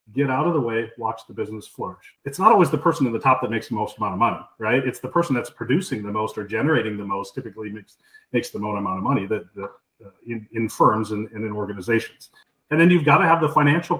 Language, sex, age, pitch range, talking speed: English, male, 40-59, 120-170 Hz, 265 wpm